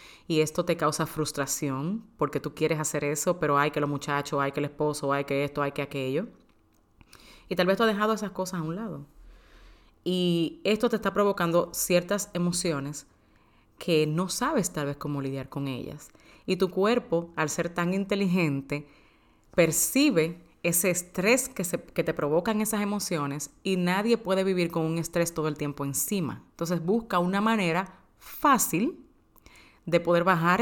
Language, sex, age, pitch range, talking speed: Spanish, female, 30-49, 155-210 Hz, 170 wpm